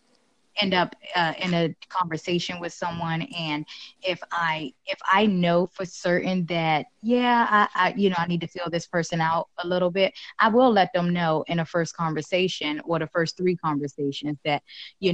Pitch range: 155-185 Hz